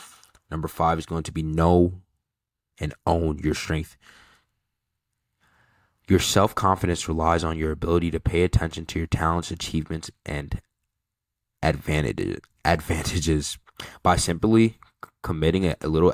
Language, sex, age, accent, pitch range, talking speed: English, male, 20-39, American, 80-90 Hz, 115 wpm